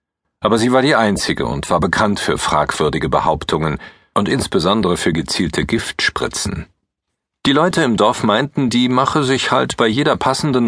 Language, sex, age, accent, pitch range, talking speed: German, male, 40-59, German, 90-130 Hz, 155 wpm